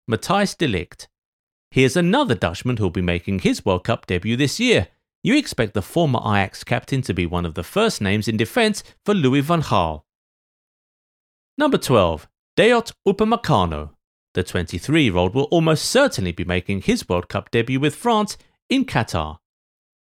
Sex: male